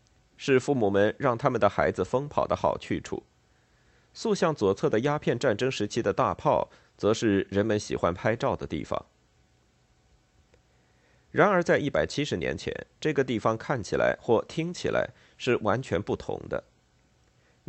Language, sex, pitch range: Chinese, male, 100-140 Hz